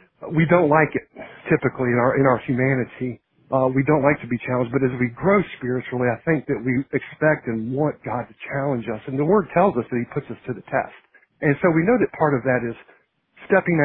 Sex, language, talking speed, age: male, English, 240 wpm, 50-69